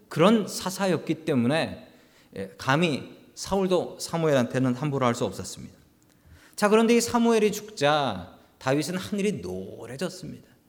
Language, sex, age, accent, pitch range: Korean, male, 40-59, native, 140-205 Hz